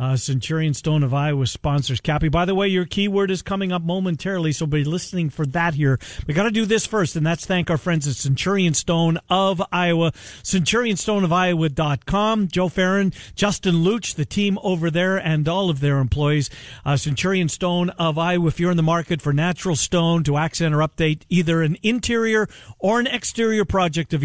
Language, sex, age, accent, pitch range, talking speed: English, male, 50-69, American, 145-185 Hz, 190 wpm